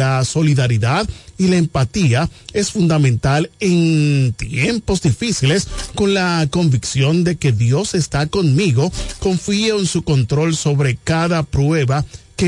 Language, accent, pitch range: Spanish, Venezuelan, 130-175 Hz